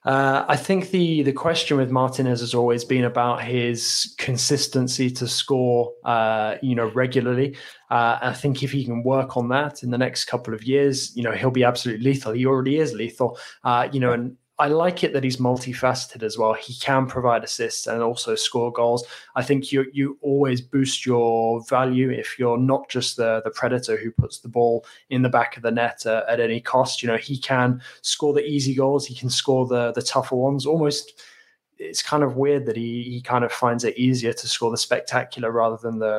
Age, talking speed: 20-39, 215 wpm